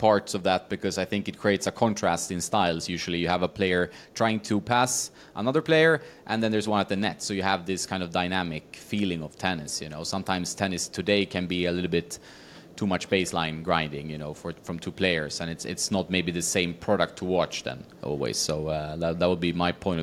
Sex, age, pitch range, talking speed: male, 30-49, 90-110 Hz, 235 wpm